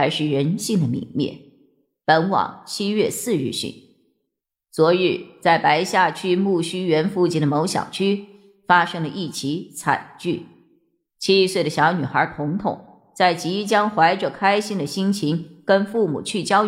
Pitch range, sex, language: 160-200 Hz, female, Chinese